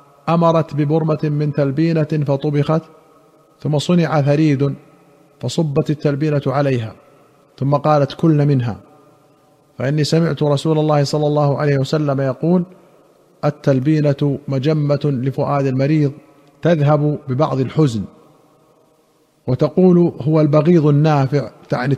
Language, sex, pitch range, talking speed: Arabic, male, 140-155 Hz, 100 wpm